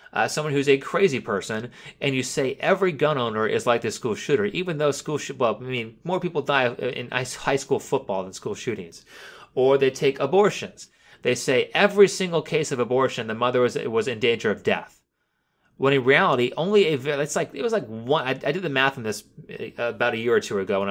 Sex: male